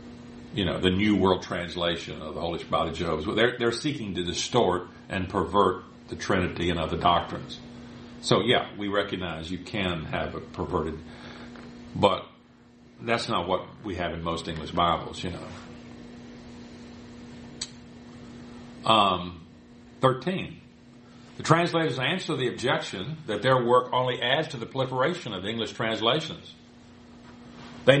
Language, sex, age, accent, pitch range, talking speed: English, male, 50-69, American, 90-150 Hz, 135 wpm